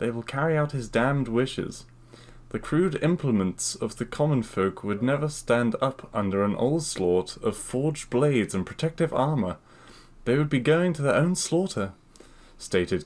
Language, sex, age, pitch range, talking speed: English, male, 20-39, 100-140 Hz, 165 wpm